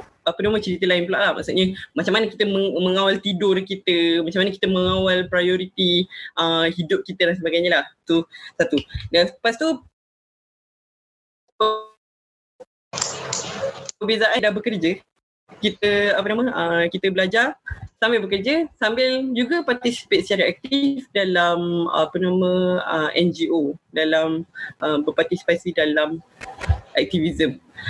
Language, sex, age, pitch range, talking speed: Malay, female, 20-39, 175-230 Hz, 125 wpm